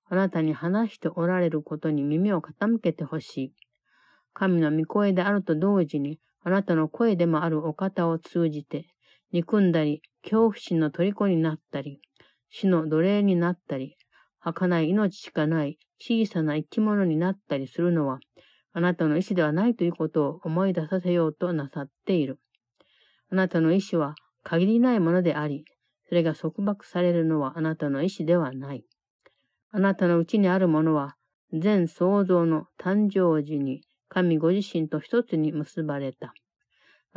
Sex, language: female, Japanese